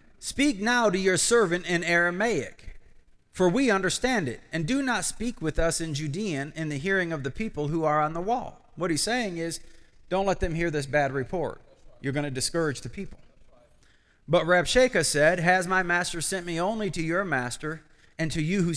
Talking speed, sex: 200 wpm, male